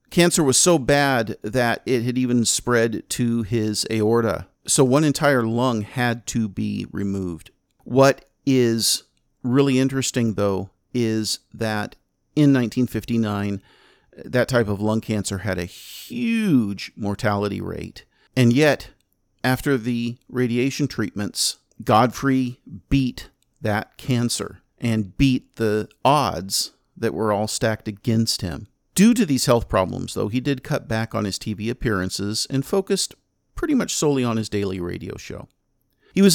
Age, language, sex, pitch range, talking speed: 50-69, English, male, 110-140 Hz, 140 wpm